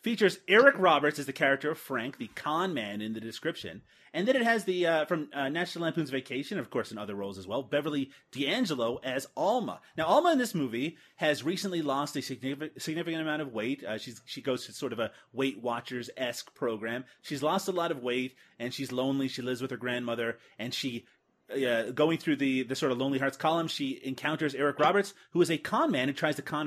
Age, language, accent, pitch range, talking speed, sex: 30-49, English, American, 125-175 Hz, 225 wpm, male